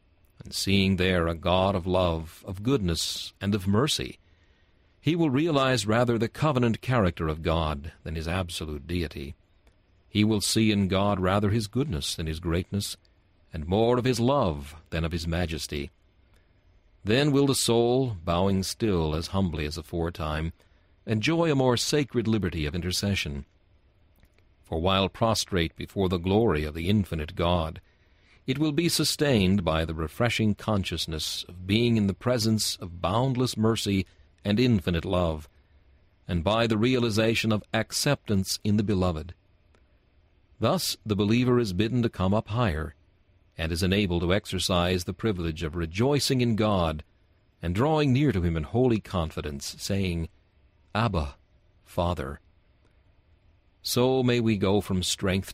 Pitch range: 85-110 Hz